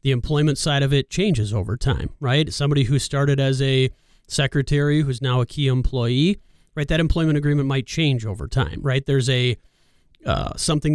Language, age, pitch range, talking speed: English, 30-49, 125-145 Hz, 180 wpm